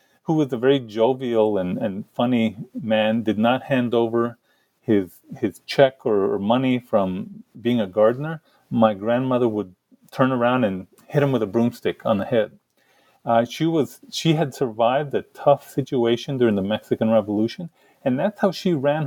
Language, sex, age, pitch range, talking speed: English, male, 40-59, 110-140 Hz, 175 wpm